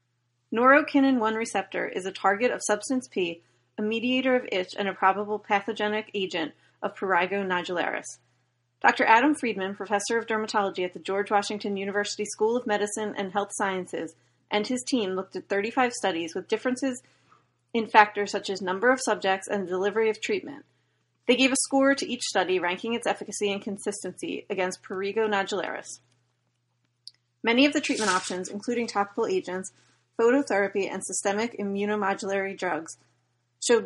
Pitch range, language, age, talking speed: 180-225 Hz, English, 30-49, 155 wpm